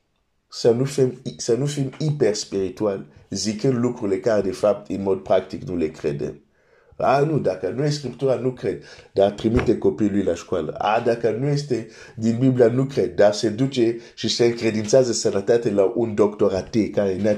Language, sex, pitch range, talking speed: Romanian, male, 105-130 Hz, 85 wpm